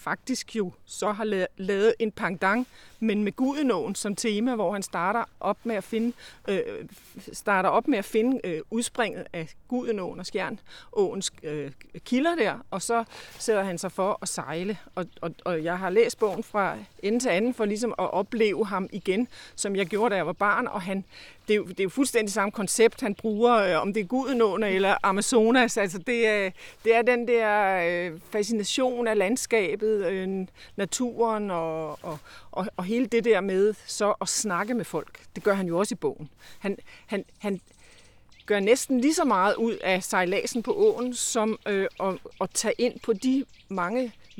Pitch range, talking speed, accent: 190-235 Hz, 190 wpm, native